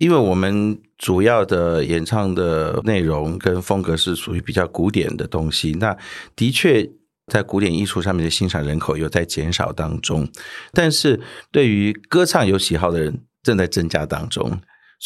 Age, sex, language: 50-69, male, Chinese